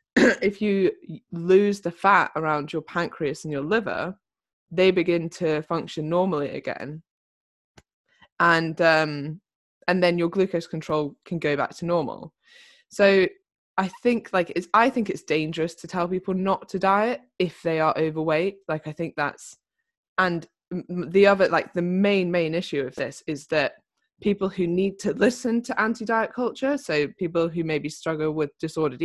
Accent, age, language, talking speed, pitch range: British, 20-39, English, 165 wpm, 155-190 Hz